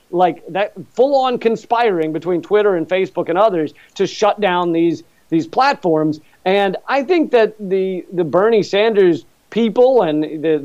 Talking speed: 160 wpm